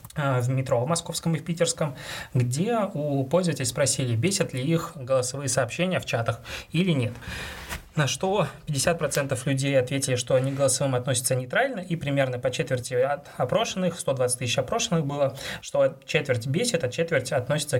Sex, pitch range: male, 125-160 Hz